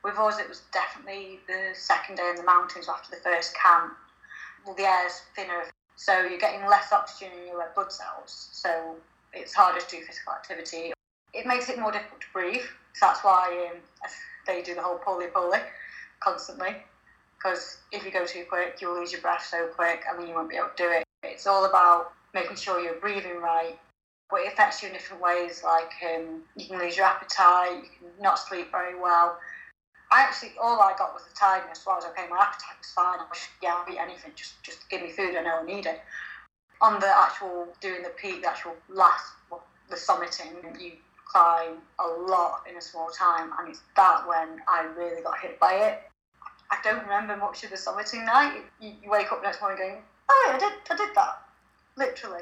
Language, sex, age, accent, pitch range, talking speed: English, female, 30-49, British, 175-205 Hz, 210 wpm